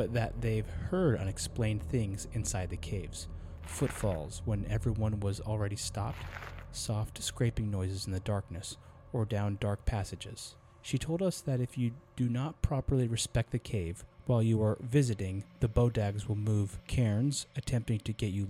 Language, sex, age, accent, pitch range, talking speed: English, male, 30-49, American, 95-120 Hz, 160 wpm